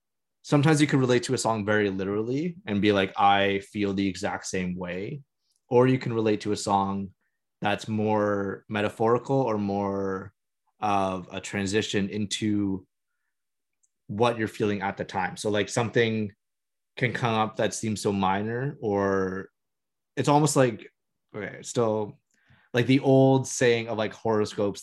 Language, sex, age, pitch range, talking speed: English, male, 20-39, 100-120 Hz, 150 wpm